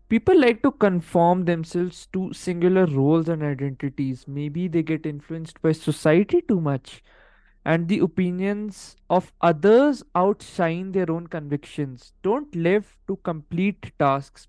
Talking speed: 135 wpm